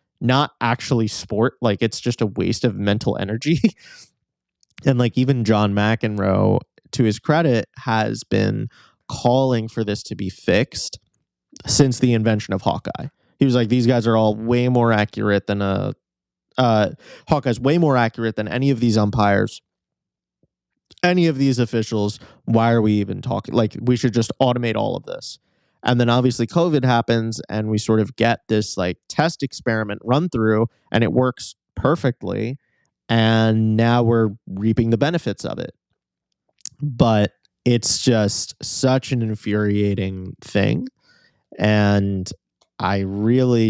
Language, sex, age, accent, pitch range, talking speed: English, male, 20-39, American, 105-125 Hz, 150 wpm